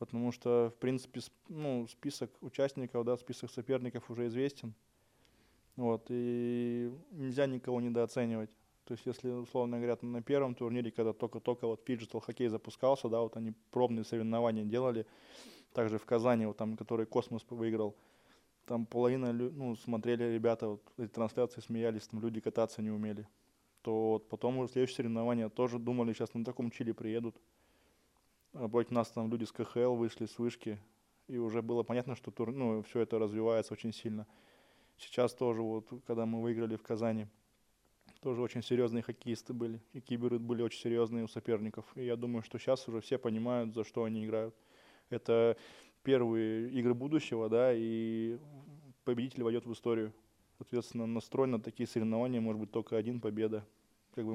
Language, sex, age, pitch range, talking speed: Russian, male, 20-39, 115-125 Hz, 155 wpm